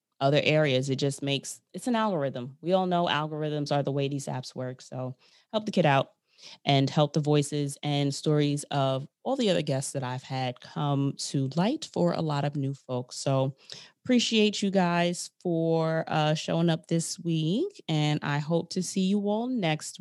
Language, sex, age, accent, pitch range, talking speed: English, female, 20-39, American, 145-180 Hz, 190 wpm